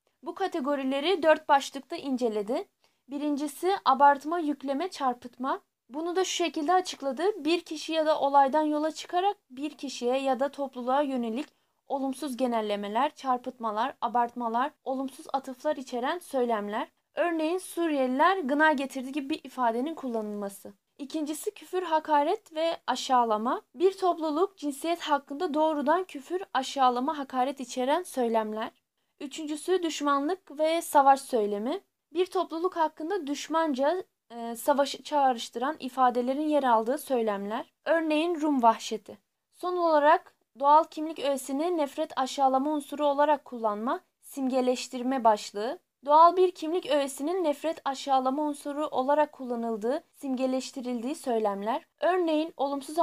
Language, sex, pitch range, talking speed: Turkish, female, 255-315 Hz, 115 wpm